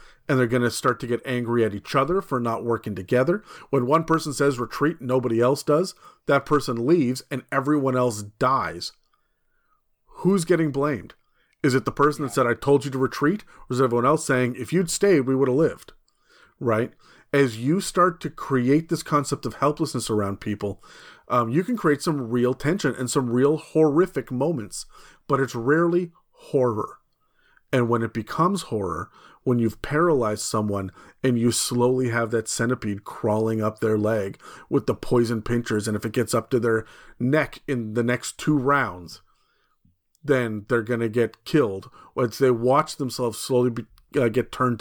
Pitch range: 115-140 Hz